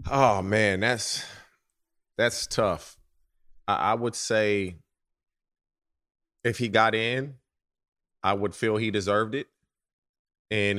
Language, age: English, 30-49